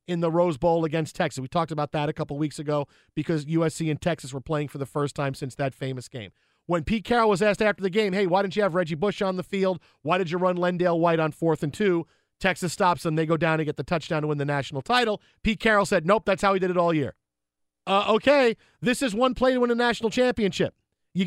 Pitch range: 165-225 Hz